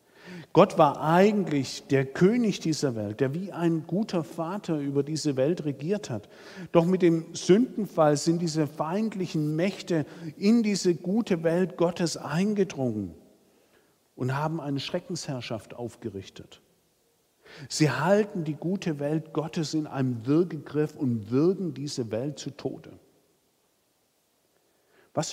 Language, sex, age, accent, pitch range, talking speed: German, male, 50-69, German, 130-165 Hz, 125 wpm